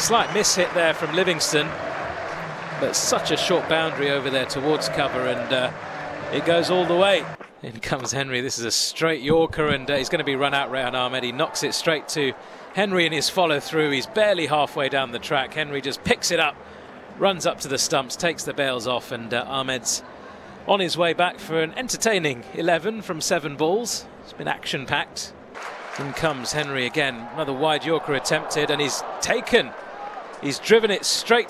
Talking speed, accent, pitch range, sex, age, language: 190 wpm, British, 145-185 Hz, male, 30-49, English